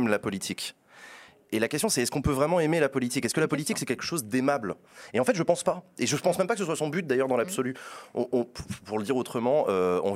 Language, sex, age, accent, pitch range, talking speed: French, male, 30-49, French, 100-135 Hz, 295 wpm